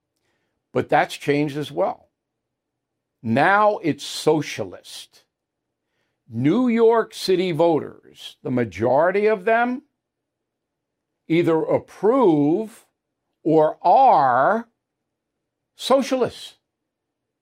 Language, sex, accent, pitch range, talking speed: English, male, American, 150-210 Hz, 70 wpm